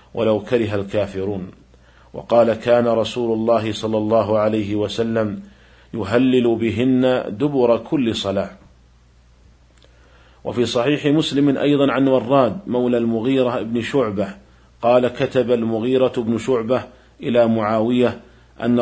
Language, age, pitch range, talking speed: Arabic, 50-69, 105-125 Hz, 110 wpm